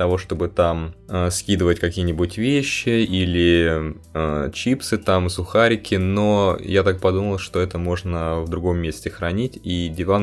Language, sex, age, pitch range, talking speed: Russian, male, 20-39, 80-100 Hz, 145 wpm